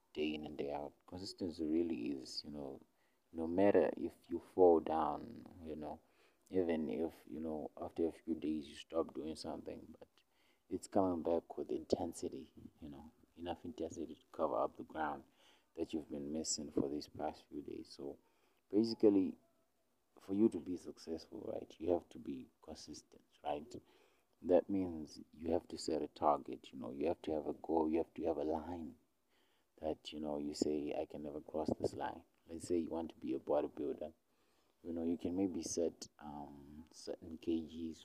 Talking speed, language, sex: 185 wpm, English, male